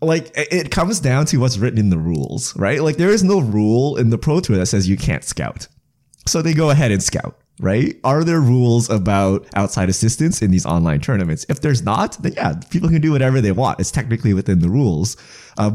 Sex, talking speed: male, 225 wpm